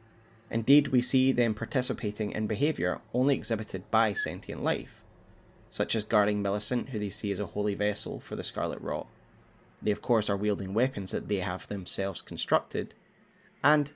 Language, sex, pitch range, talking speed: English, male, 100-115 Hz, 170 wpm